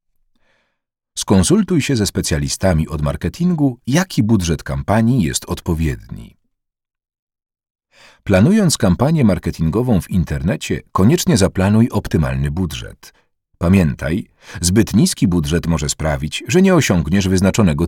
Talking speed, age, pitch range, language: 100 wpm, 40-59, 85-140 Hz, Polish